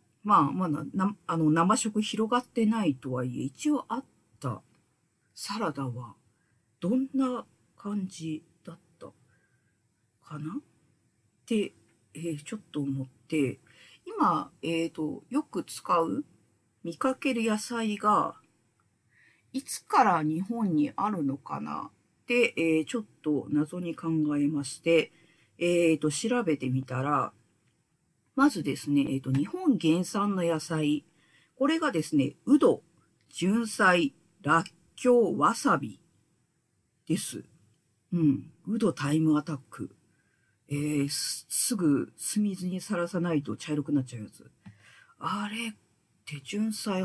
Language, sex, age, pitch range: Japanese, female, 50-69, 145-220 Hz